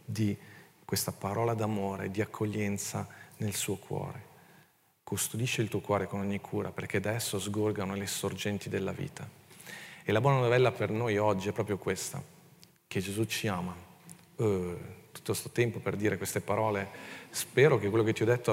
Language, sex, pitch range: Italian, male, 100-125 Hz